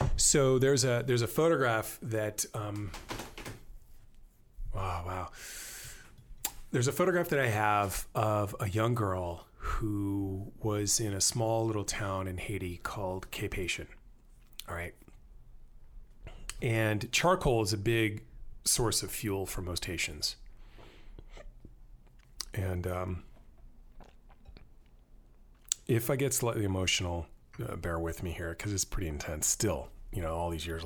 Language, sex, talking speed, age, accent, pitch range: English, male, 130 wpm, 30-49, American, 90-115 Hz